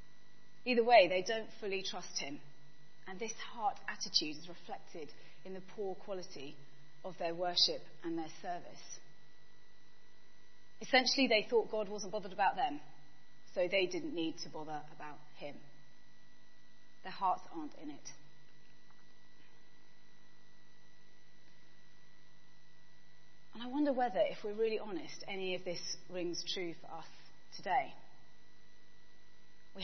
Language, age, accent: English, 30-49, British